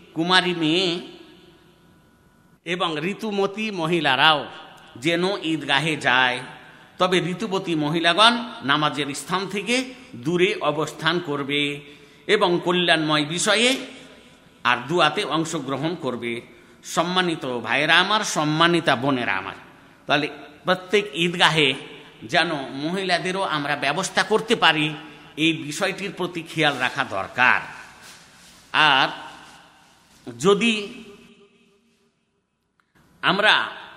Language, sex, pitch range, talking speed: Bengali, male, 150-205 Hz, 85 wpm